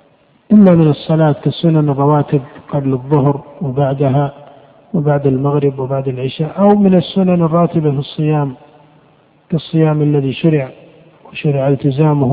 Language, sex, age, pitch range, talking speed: Arabic, male, 50-69, 150-185 Hz, 110 wpm